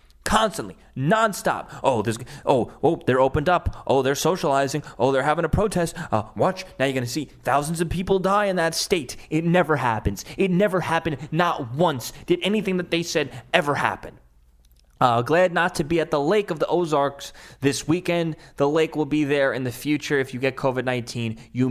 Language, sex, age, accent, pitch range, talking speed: English, male, 20-39, American, 140-200 Hz, 195 wpm